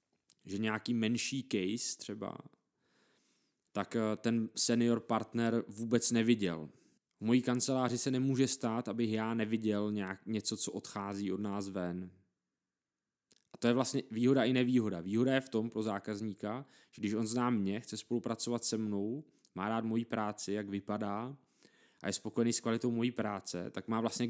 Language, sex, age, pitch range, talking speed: Czech, male, 20-39, 105-120 Hz, 160 wpm